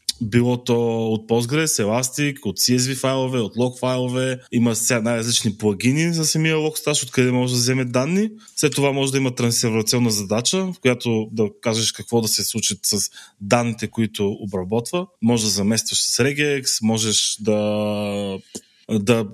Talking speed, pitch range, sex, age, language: 150 wpm, 105-125 Hz, male, 20-39, Bulgarian